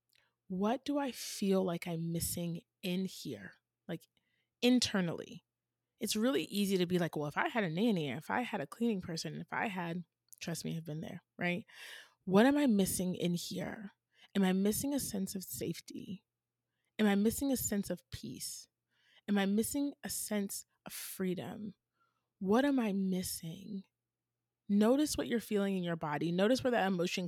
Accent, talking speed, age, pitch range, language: American, 175 wpm, 20-39, 170-210 Hz, English